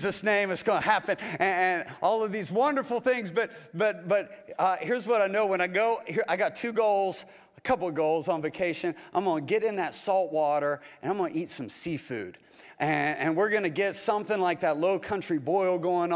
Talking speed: 235 wpm